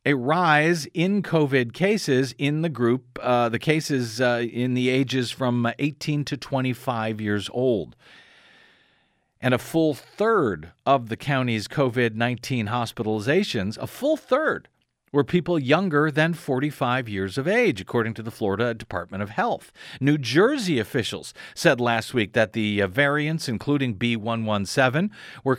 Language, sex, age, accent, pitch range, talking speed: English, male, 50-69, American, 120-160 Hz, 140 wpm